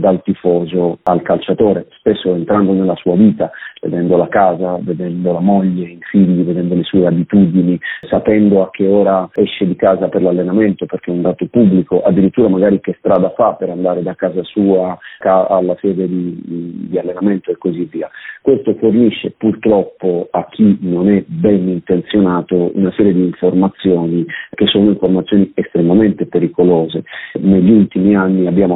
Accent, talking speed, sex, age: native, 155 wpm, male, 40-59